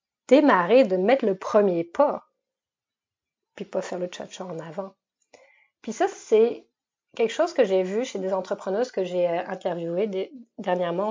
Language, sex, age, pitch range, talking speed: French, female, 30-49, 180-235 Hz, 150 wpm